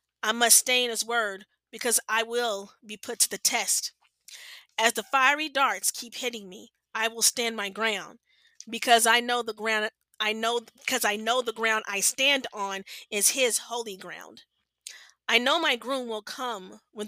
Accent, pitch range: American, 215-250 Hz